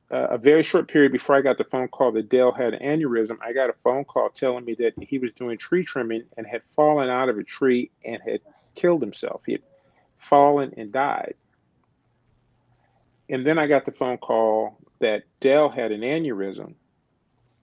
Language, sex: English, male